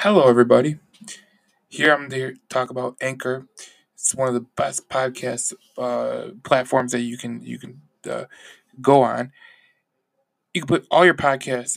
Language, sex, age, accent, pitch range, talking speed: English, male, 20-39, American, 120-150 Hz, 155 wpm